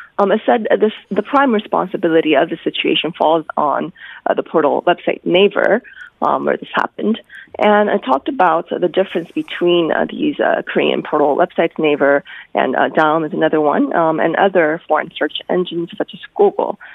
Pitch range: 160-200 Hz